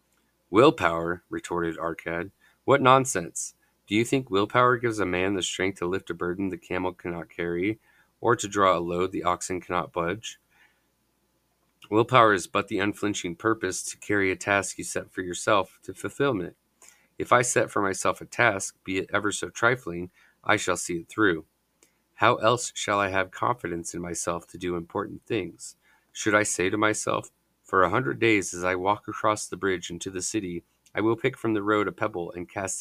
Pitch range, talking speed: 90-110 Hz, 190 wpm